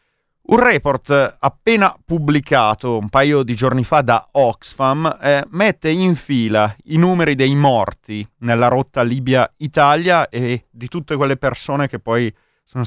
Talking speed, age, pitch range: 140 wpm, 30-49, 110-145 Hz